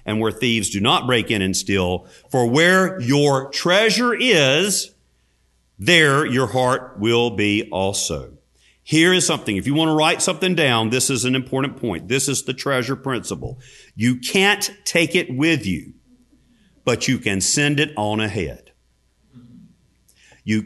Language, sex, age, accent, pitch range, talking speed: English, male, 50-69, American, 110-155 Hz, 155 wpm